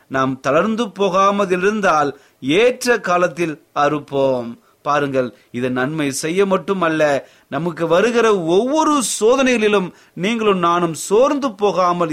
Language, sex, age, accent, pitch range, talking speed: Tamil, male, 30-49, native, 140-205 Hz, 95 wpm